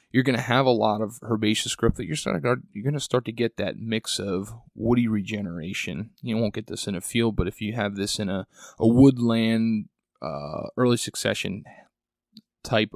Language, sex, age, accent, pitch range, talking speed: English, male, 30-49, American, 105-120 Hz, 205 wpm